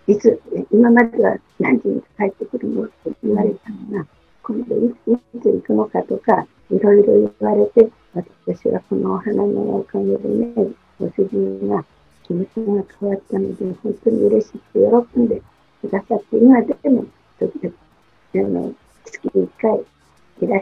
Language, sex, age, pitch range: Japanese, female, 50-69, 205-240 Hz